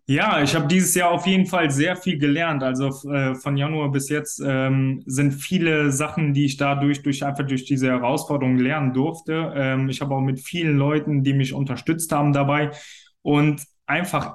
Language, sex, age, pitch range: German, male, 20-39, 140-165 Hz